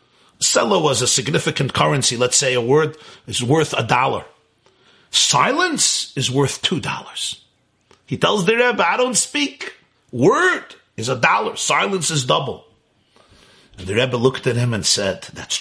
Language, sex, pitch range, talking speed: English, male, 115-160 Hz, 160 wpm